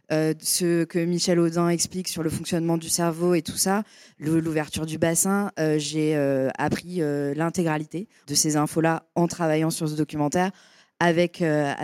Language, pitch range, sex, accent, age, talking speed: French, 150-185 Hz, female, French, 20-39, 165 wpm